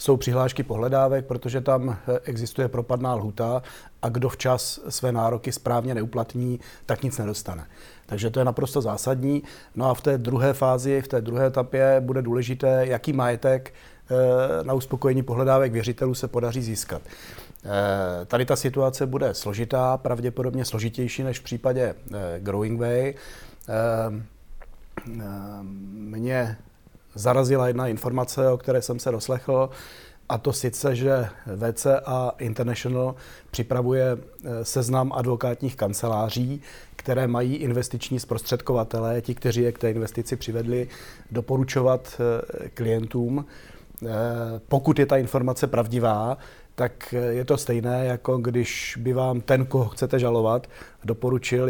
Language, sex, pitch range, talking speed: Czech, male, 115-130 Hz, 120 wpm